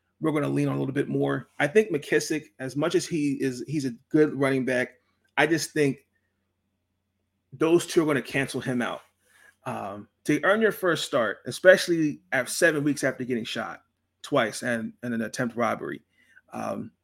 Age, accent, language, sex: 30-49, American, English, male